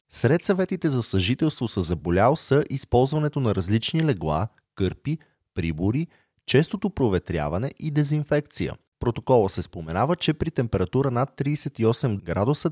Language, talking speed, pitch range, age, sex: Bulgarian, 125 wpm, 95-140 Hz, 30-49, male